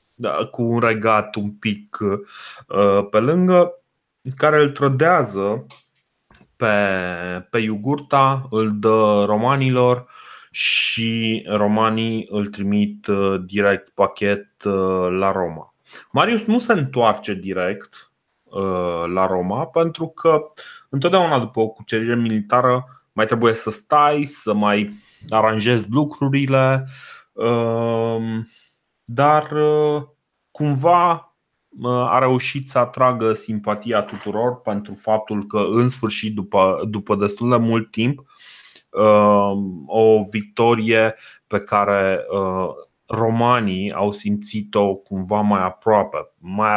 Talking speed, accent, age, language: 100 wpm, native, 30-49, Romanian